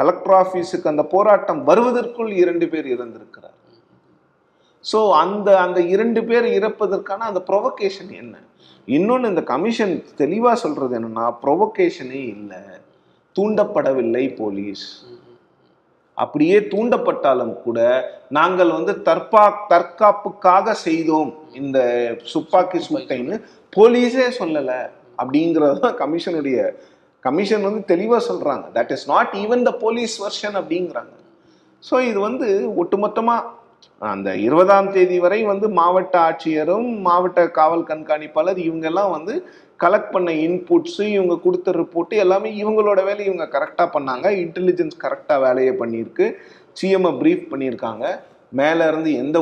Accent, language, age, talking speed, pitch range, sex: native, Tamil, 30-49, 75 wpm, 170-235 Hz, male